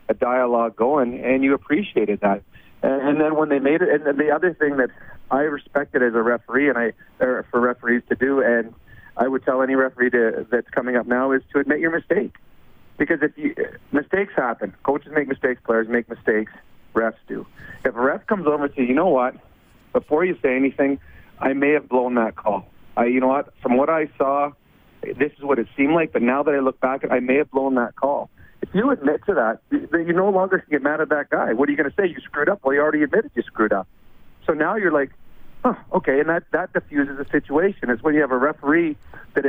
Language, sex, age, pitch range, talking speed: English, male, 40-59, 125-155 Hz, 235 wpm